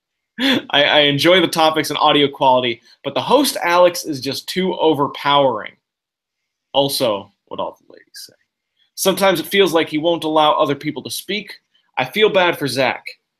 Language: English